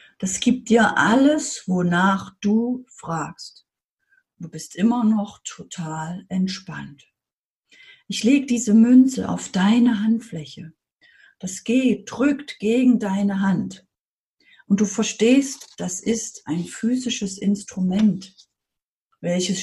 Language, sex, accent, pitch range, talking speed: German, female, German, 185-230 Hz, 105 wpm